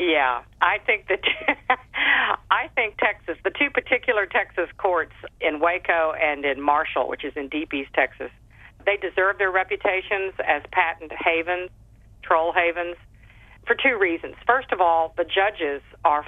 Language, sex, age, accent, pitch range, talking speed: English, female, 50-69, American, 155-215 Hz, 150 wpm